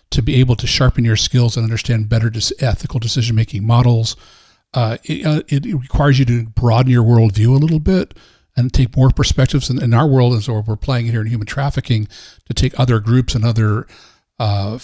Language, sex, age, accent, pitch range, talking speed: English, male, 40-59, American, 110-130 Hz, 195 wpm